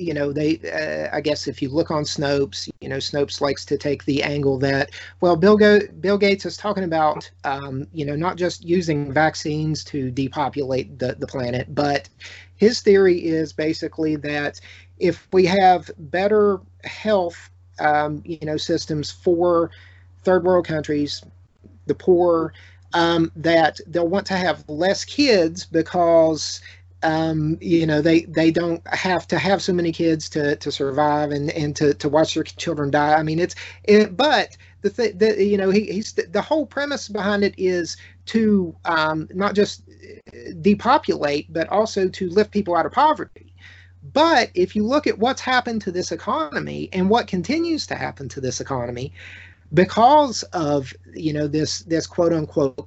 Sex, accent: male, American